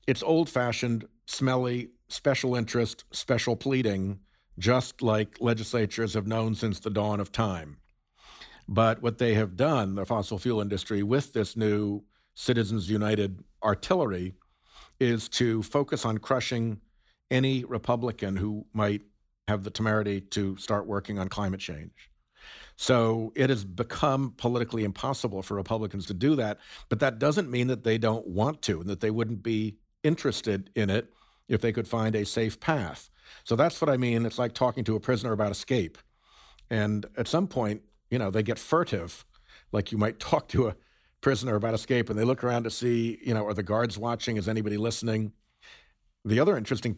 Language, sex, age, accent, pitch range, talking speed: English, male, 50-69, American, 105-125 Hz, 170 wpm